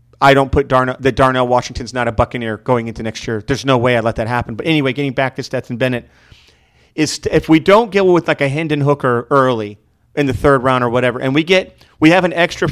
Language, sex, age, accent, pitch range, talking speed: English, male, 40-59, American, 125-155 Hz, 250 wpm